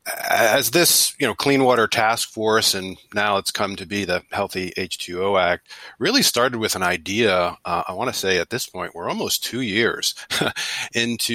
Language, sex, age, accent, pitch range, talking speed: English, male, 40-59, American, 95-115 Hz, 200 wpm